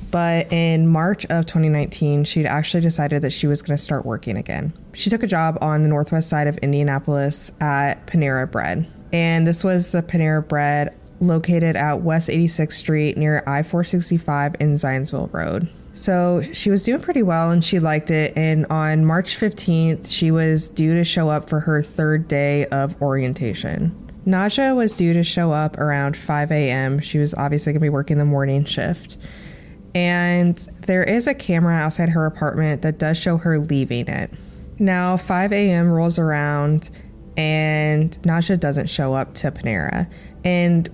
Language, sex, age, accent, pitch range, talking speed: English, female, 20-39, American, 150-175 Hz, 170 wpm